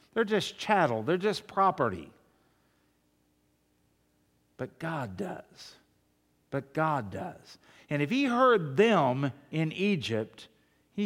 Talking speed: 110 wpm